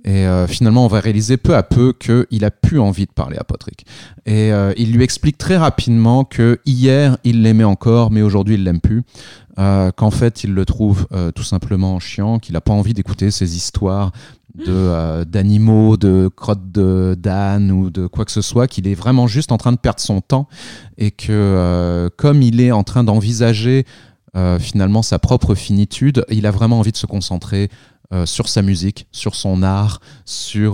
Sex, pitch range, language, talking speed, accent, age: male, 100-125 Hz, French, 200 wpm, French, 30-49